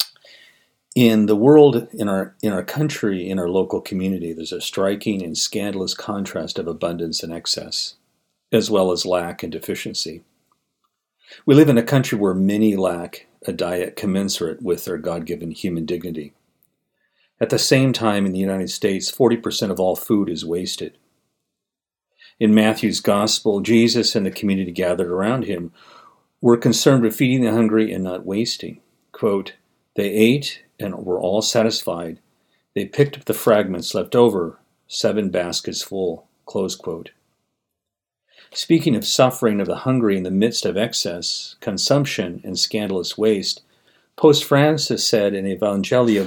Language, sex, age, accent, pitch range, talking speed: English, male, 50-69, American, 95-120 Hz, 150 wpm